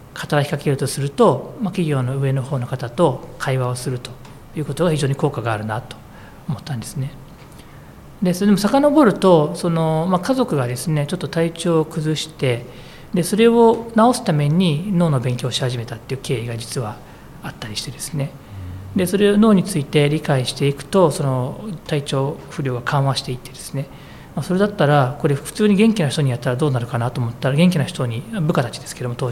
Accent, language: native, Japanese